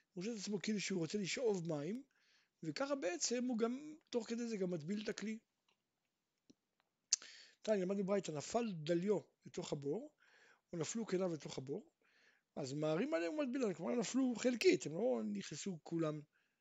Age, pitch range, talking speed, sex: 60-79, 170-230 Hz, 130 wpm, male